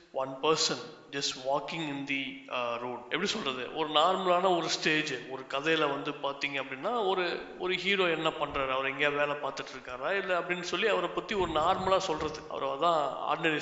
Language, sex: Thai, male